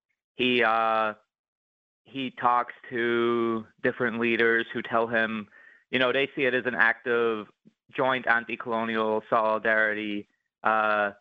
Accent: American